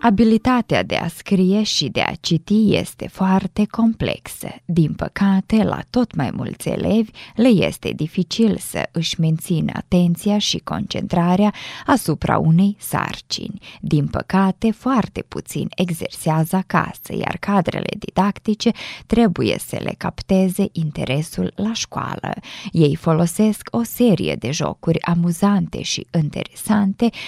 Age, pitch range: 20-39, 170-210 Hz